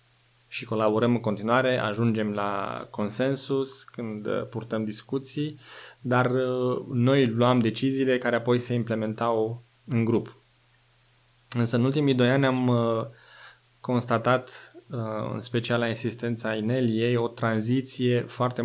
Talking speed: 115 wpm